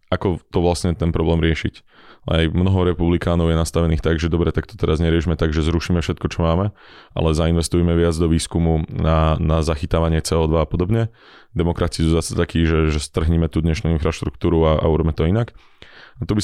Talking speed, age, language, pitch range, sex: 190 wpm, 20-39, Slovak, 80-90 Hz, male